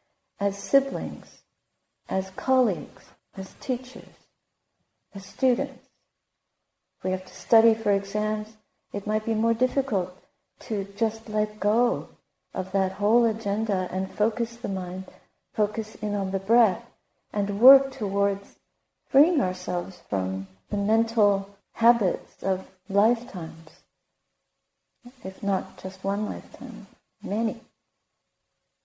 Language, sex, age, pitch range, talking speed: English, female, 50-69, 195-240 Hz, 110 wpm